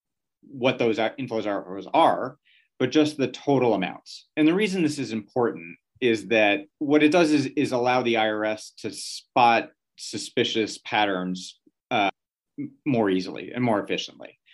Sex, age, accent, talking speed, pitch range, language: male, 30-49, American, 150 wpm, 110-145 Hz, English